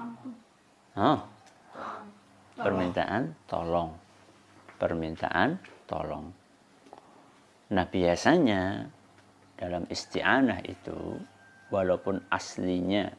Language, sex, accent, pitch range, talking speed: Indonesian, male, native, 95-115 Hz, 55 wpm